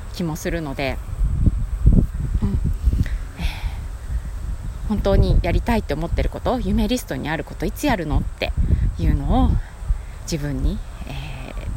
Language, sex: Japanese, female